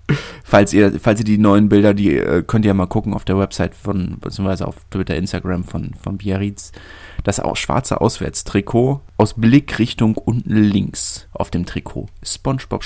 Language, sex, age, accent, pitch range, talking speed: German, male, 30-49, German, 95-120 Hz, 175 wpm